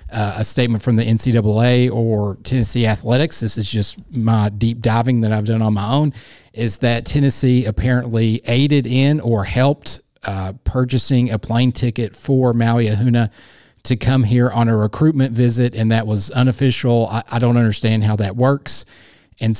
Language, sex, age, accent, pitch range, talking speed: English, male, 40-59, American, 110-125 Hz, 170 wpm